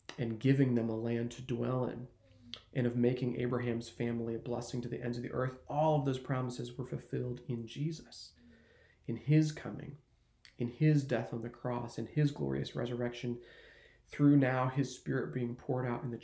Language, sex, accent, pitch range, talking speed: English, male, American, 115-130 Hz, 190 wpm